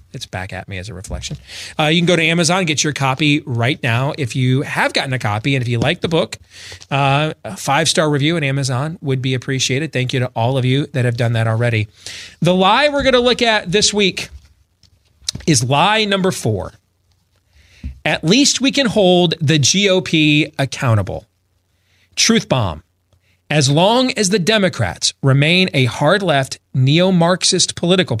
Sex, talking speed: male, 175 wpm